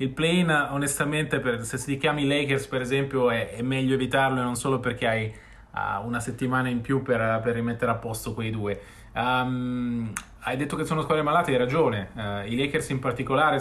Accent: native